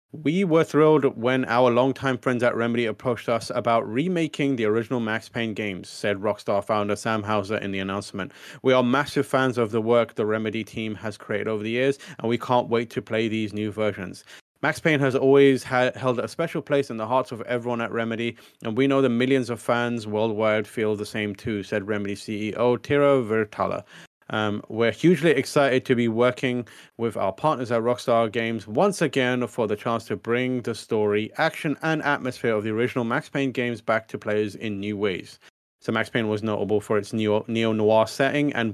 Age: 30-49